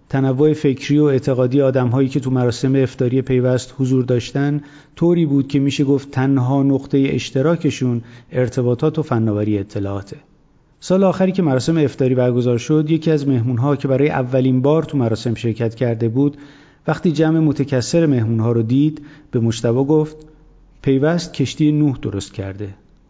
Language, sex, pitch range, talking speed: Persian, male, 120-145 Hz, 155 wpm